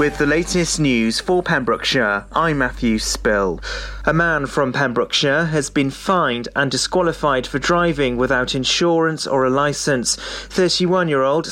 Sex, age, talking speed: male, 30-49, 135 wpm